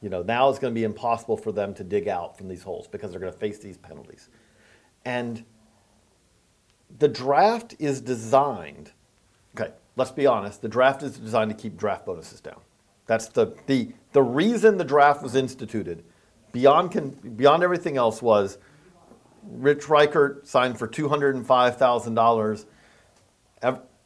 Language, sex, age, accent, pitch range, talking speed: English, male, 40-59, American, 110-140 Hz, 150 wpm